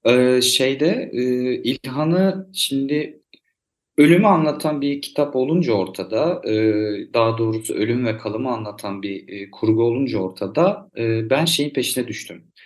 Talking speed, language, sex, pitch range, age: 110 wpm, Turkish, male, 120-170 Hz, 40-59